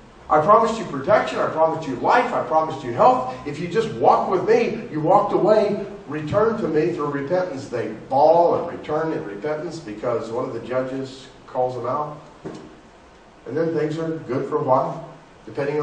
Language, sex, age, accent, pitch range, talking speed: English, male, 40-59, American, 120-160 Hz, 185 wpm